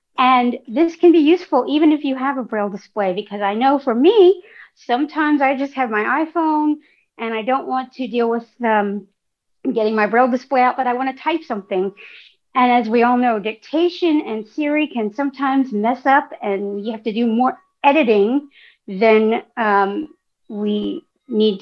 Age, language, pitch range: 40-59, English, 210-275 Hz